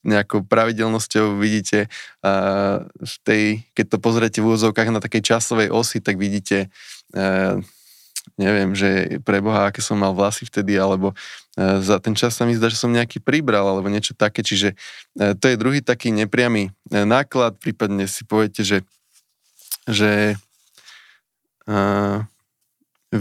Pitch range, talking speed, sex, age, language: 100-115 Hz, 140 wpm, male, 20-39, Slovak